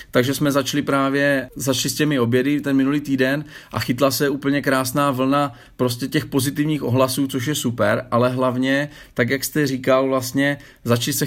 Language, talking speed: Czech, 165 wpm